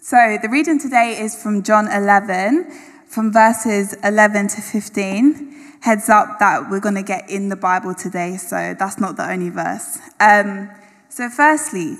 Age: 10-29